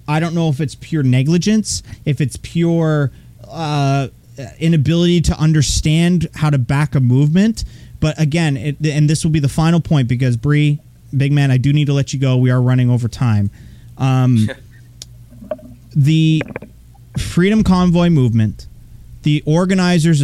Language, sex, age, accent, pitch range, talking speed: English, male, 30-49, American, 125-170 Hz, 150 wpm